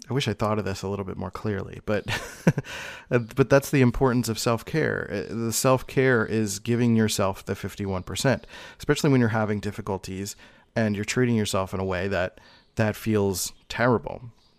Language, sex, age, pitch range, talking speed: English, male, 30-49, 100-115 Hz, 170 wpm